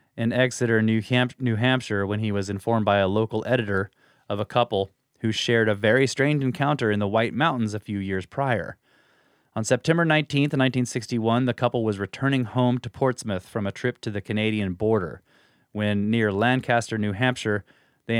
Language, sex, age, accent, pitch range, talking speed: English, male, 30-49, American, 105-130 Hz, 180 wpm